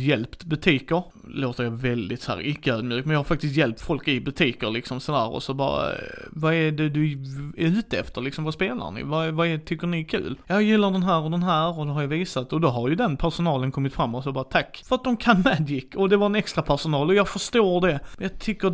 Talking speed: 260 wpm